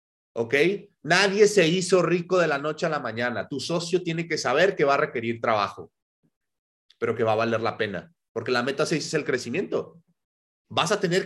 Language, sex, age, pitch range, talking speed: Spanish, male, 30-49, 150-190 Hz, 205 wpm